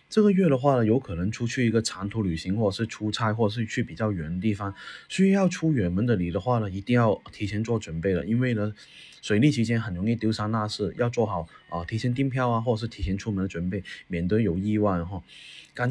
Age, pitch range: 20-39, 95-125 Hz